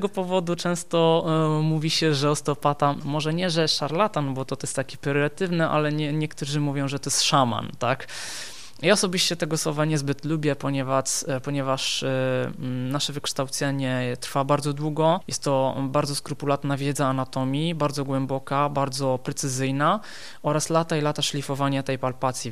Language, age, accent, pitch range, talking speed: Polish, 20-39, native, 135-160 Hz, 145 wpm